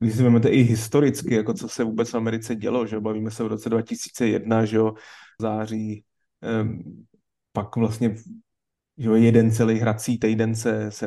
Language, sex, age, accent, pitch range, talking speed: Czech, male, 20-39, native, 110-120 Hz, 165 wpm